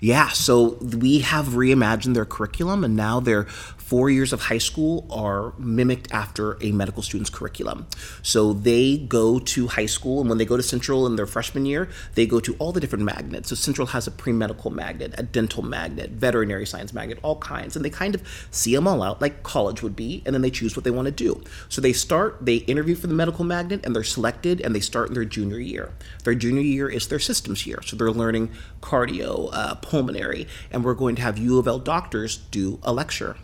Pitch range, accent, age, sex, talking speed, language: 110-135 Hz, American, 30-49, male, 225 wpm, English